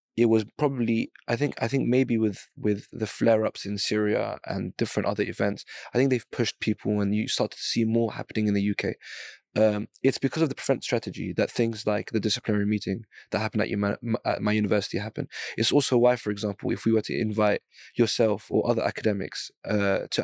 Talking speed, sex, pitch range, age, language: 210 wpm, male, 105-120 Hz, 20-39, English